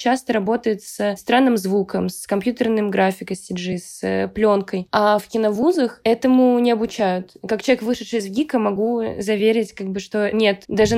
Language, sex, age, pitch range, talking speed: Russian, female, 20-39, 200-230 Hz, 170 wpm